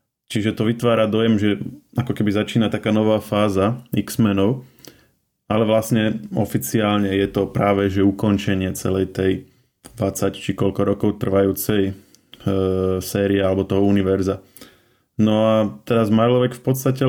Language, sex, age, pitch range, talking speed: Slovak, male, 20-39, 100-110 Hz, 135 wpm